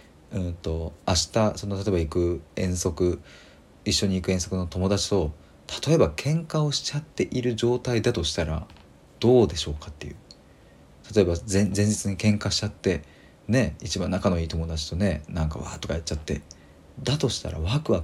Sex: male